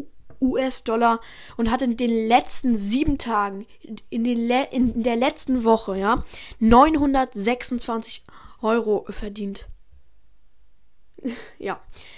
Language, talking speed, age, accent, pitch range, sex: German, 100 wpm, 10-29, German, 220-250 Hz, female